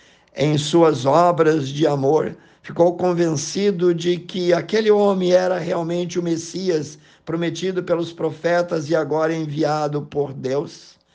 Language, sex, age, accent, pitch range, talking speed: Portuguese, male, 50-69, Brazilian, 145-175 Hz, 125 wpm